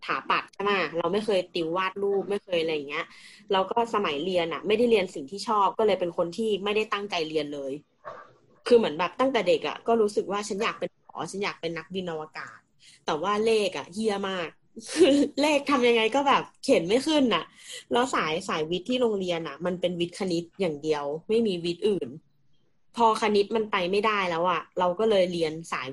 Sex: female